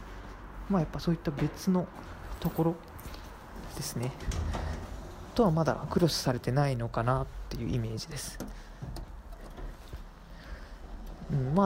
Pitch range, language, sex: 125-165 Hz, Japanese, male